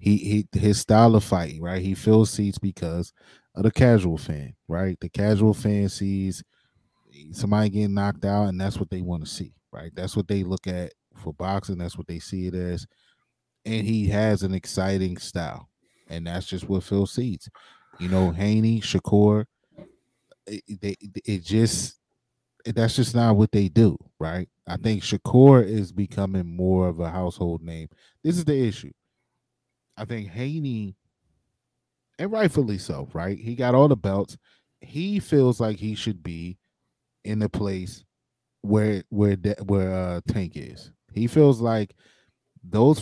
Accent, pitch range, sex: American, 95-115 Hz, male